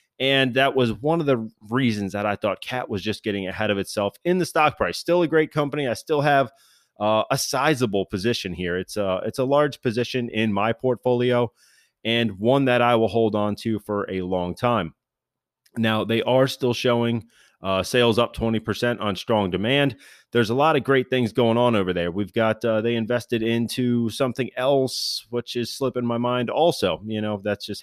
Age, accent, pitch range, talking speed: 30-49, American, 100-130 Hz, 205 wpm